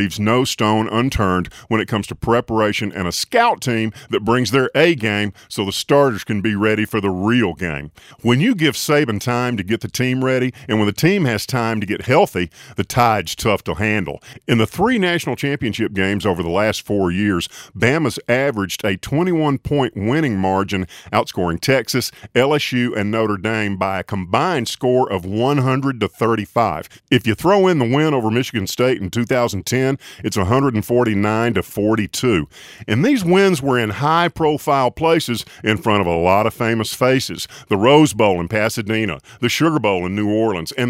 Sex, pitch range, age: male, 105-135 Hz, 50-69